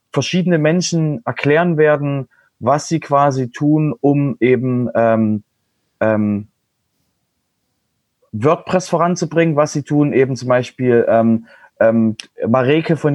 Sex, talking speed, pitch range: male, 110 wpm, 115-145 Hz